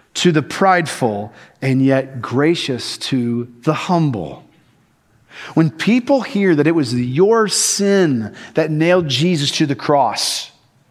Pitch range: 135-190 Hz